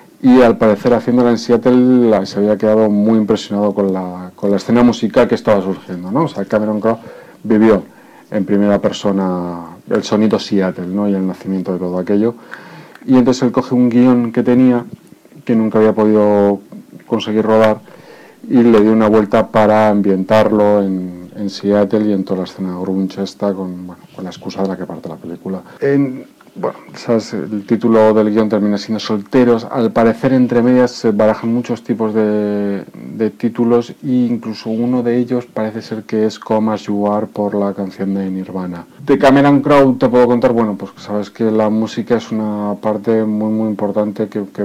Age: 40-59